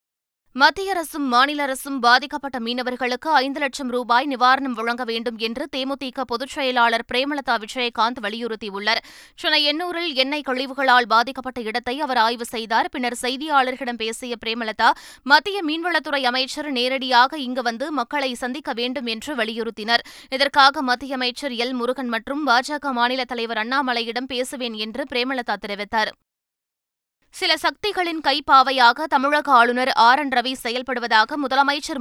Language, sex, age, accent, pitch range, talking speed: Tamil, female, 20-39, native, 240-280 Hz, 125 wpm